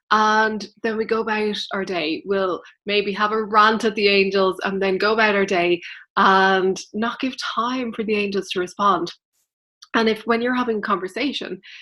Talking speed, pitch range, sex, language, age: 190 wpm, 200-240 Hz, female, English, 20-39